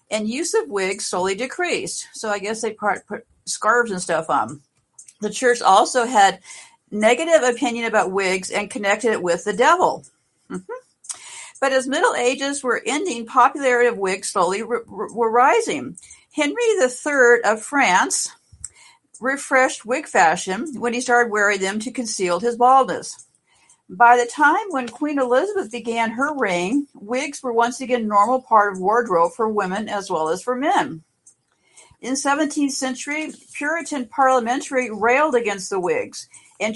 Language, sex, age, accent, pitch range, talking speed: English, female, 50-69, American, 205-270 Hz, 155 wpm